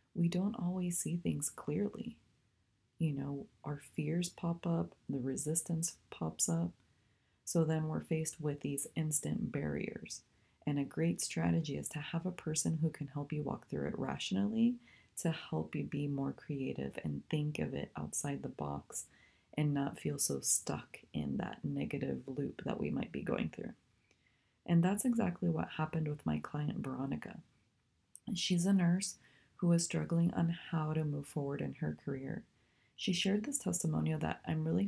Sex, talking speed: female, 170 wpm